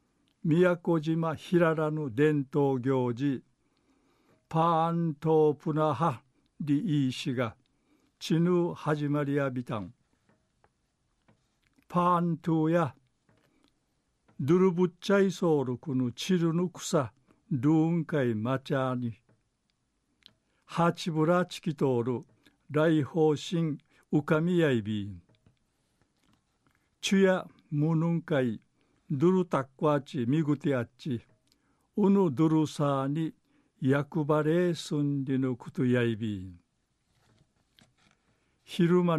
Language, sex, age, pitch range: Japanese, male, 60-79, 130-165 Hz